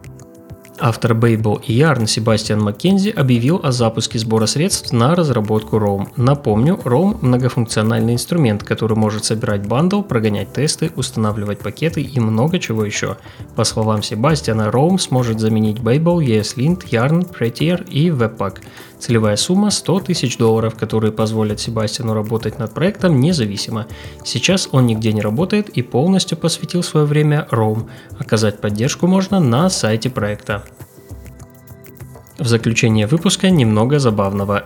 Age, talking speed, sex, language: 20-39, 130 wpm, male, Russian